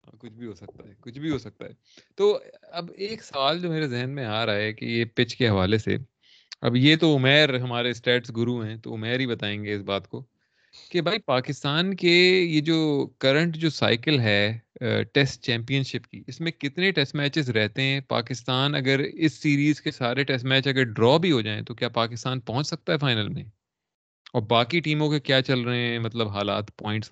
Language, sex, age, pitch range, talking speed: Urdu, male, 30-49, 115-145 Hz, 170 wpm